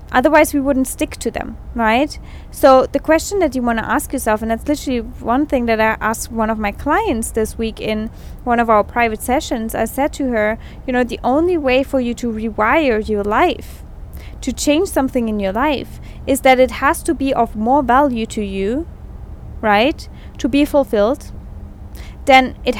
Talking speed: 195 wpm